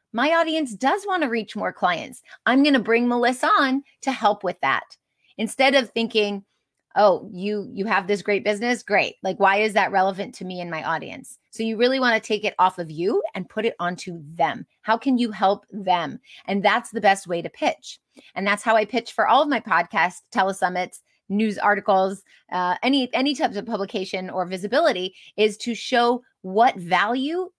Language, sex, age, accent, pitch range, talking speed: English, female, 30-49, American, 185-245 Hz, 200 wpm